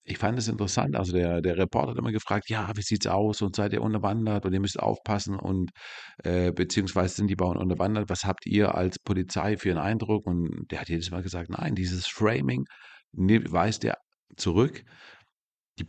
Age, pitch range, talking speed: 40-59, 90-105 Hz, 195 wpm